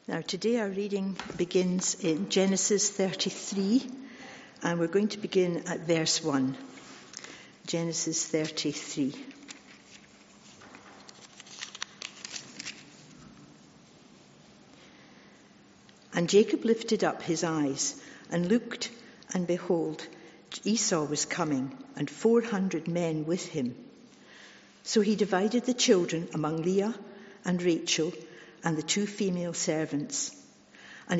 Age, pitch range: 60-79, 165-210 Hz